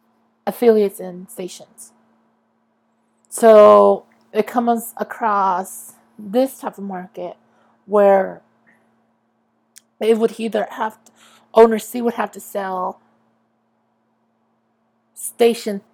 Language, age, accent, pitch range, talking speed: English, 30-49, American, 205-240 Hz, 90 wpm